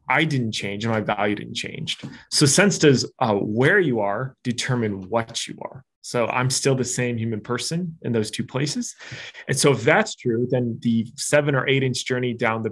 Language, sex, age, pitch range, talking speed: English, male, 30-49, 115-150 Hz, 210 wpm